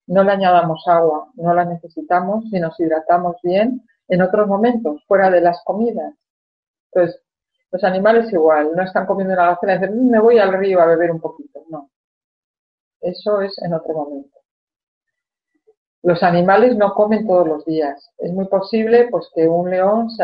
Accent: Spanish